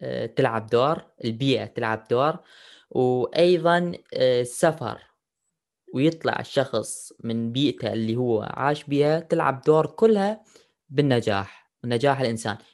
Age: 10-29